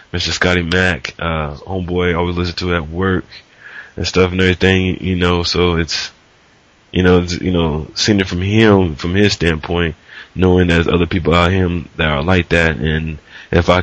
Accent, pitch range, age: American, 80-90 Hz, 20-39